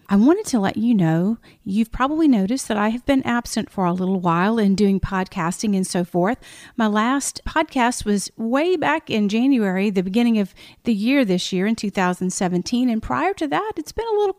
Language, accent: English, American